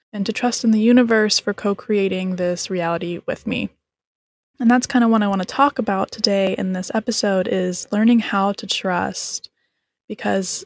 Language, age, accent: English, 10-29, American